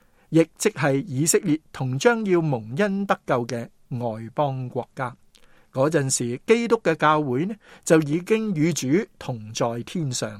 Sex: male